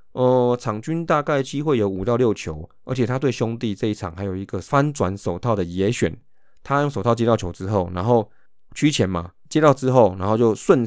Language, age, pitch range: Chinese, 20-39, 95-125 Hz